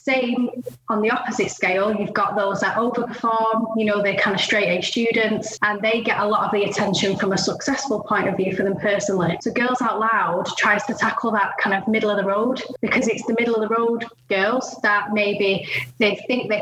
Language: English